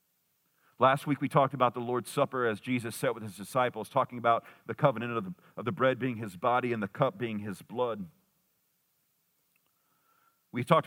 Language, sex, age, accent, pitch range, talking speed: English, male, 40-59, American, 115-140 Hz, 175 wpm